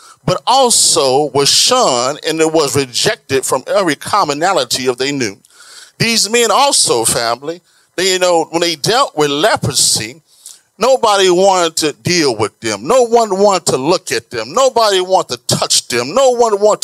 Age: 40-59